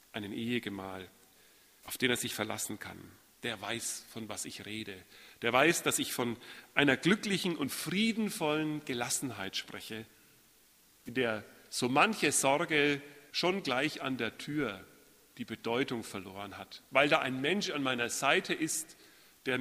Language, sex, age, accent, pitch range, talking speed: German, male, 40-59, German, 110-155 Hz, 145 wpm